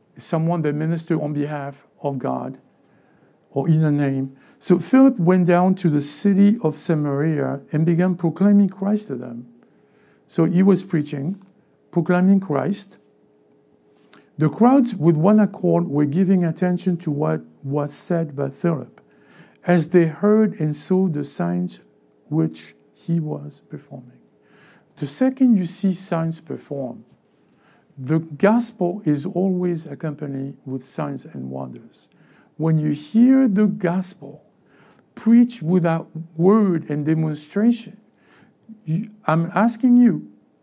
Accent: French